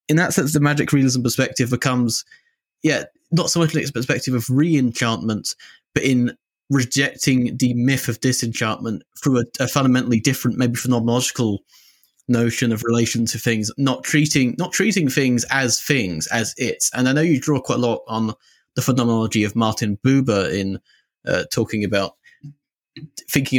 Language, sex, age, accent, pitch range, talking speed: English, male, 20-39, British, 110-130 Hz, 160 wpm